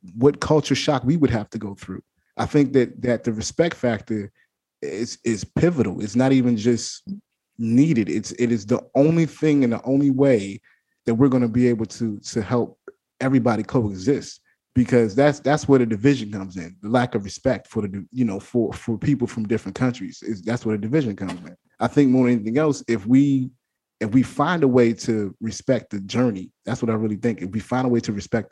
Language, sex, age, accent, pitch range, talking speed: English, male, 30-49, American, 105-130 Hz, 215 wpm